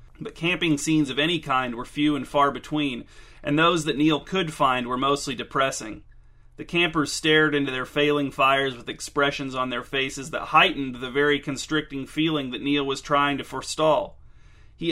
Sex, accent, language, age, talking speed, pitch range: male, American, English, 30-49, 180 wpm, 130-150 Hz